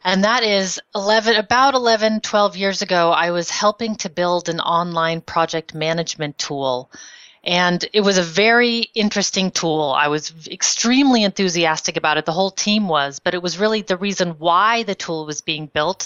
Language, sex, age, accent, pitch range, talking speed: English, female, 30-49, American, 165-205 Hz, 185 wpm